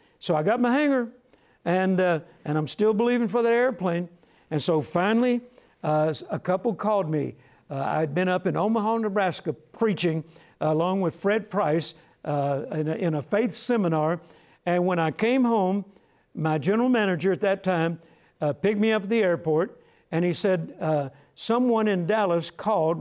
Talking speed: 175 wpm